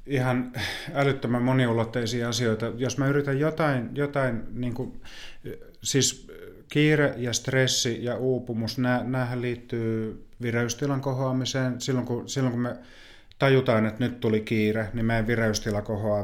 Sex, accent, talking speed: male, native, 135 wpm